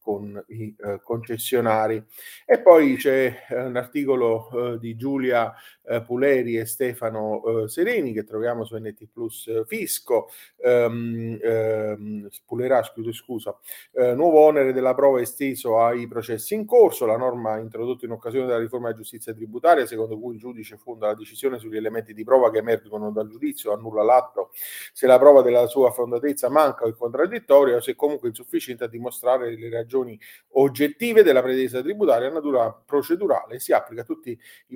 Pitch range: 115-145 Hz